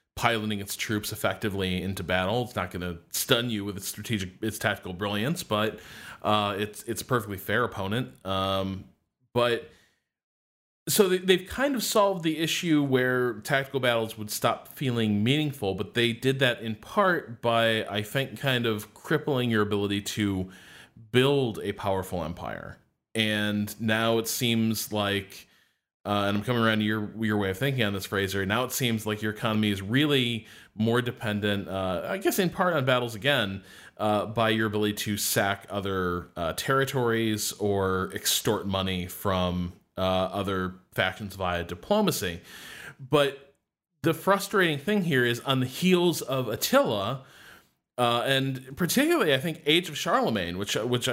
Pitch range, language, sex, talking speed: 100-135 Hz, English, male, 160 wpm